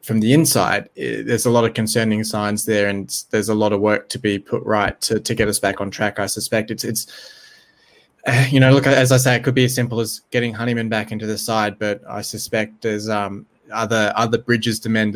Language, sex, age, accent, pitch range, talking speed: English, male, 20-39, Australian, 105-125 Hz, 240 wpm